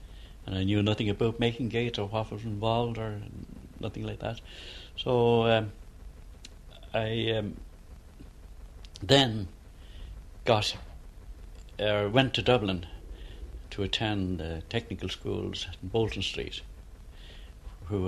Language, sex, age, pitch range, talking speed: English, male, 60-79, 85-110 Hz, 115 wpm